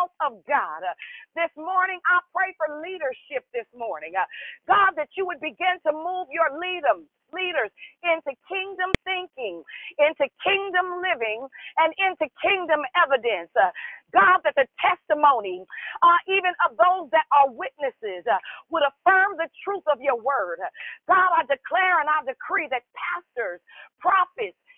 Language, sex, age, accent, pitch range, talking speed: English, female, 40-59, American, 290-370 Hz, 140 wpm